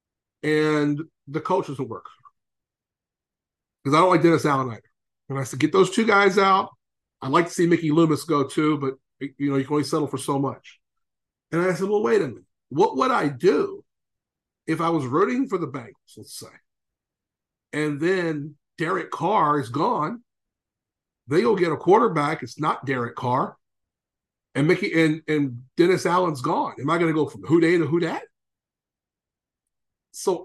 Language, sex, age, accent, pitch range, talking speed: English, male, 50-69, American, 145-205 Hz, 180 wpm